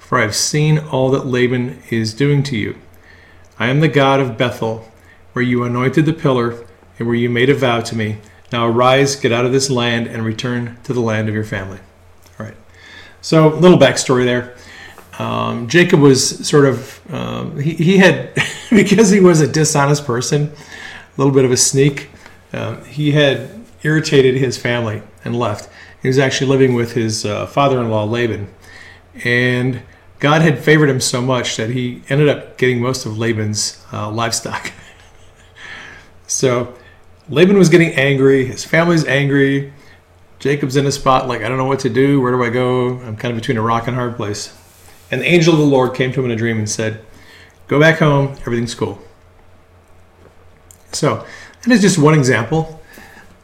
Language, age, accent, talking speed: English, 40-59, American, 185 wpm